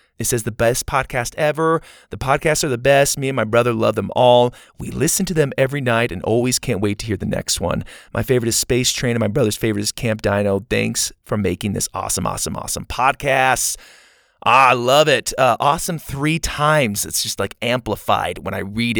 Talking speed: 215 wpm